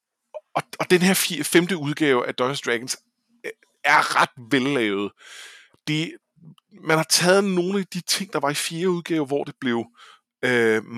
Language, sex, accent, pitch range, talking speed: Danish, male, native, 125-170 Hz, 155 wpm